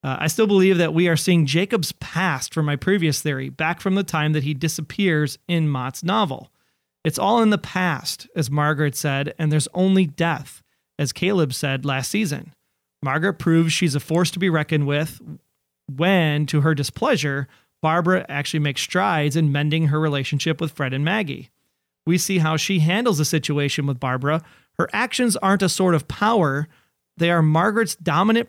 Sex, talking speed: male, 180 wpm